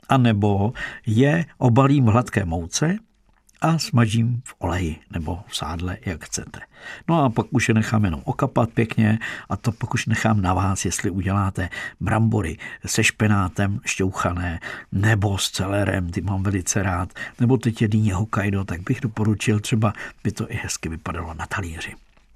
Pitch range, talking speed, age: 100-120 Hz, 165 wpm, 60-79